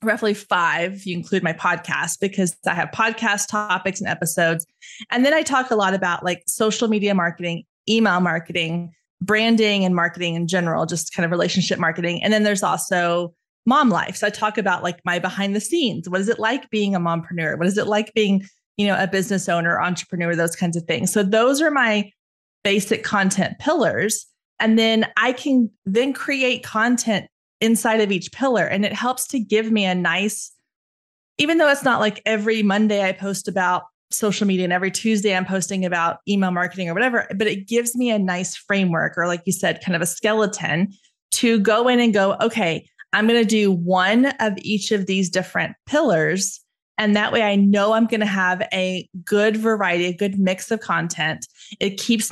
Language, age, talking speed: English, 20-39, 195 wpm